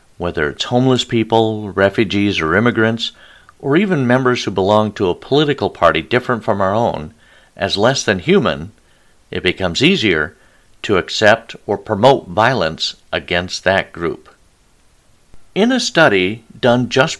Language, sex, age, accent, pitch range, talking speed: English, male, 50-69, American, 95-125 Hz, 140 wpm